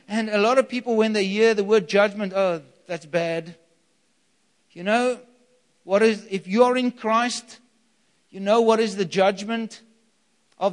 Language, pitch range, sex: English, 195-240 Hz, male